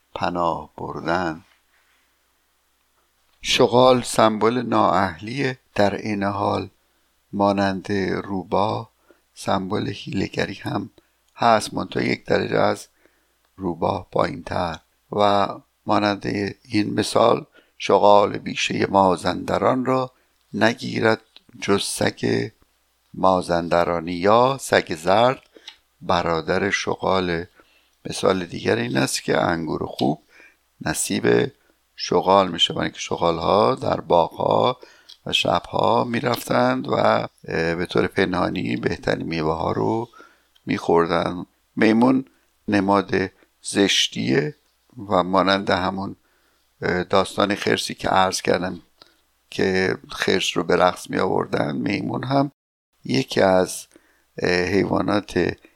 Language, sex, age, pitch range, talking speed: Persian, male, 60-79, 90-110 Hz, 95 wpm